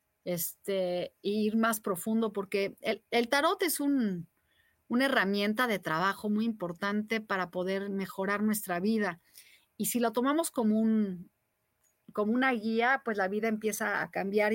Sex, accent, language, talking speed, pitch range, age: female, Mexican, Spanish, 150 wpm, 200-235 Hz, 40-59